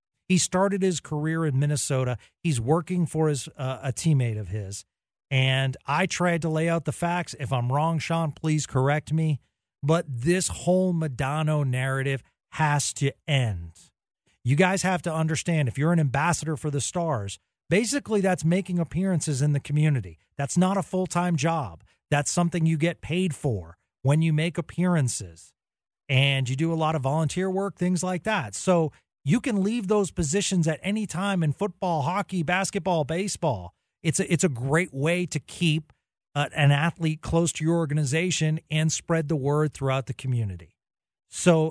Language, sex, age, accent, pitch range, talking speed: English, male, 40-59, American, 135-175 Hz, 170 wpm